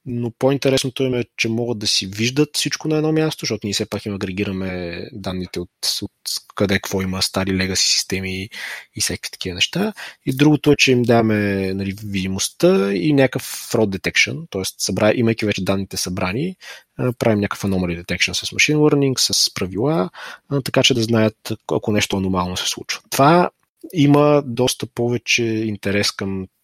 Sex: male